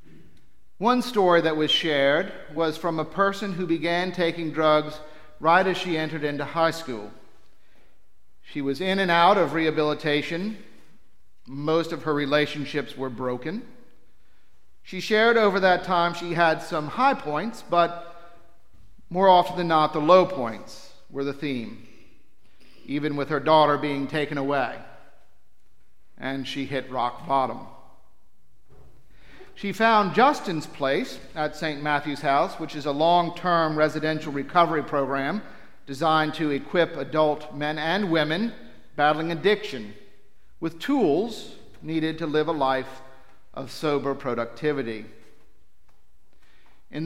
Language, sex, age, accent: English, male, 50-69, American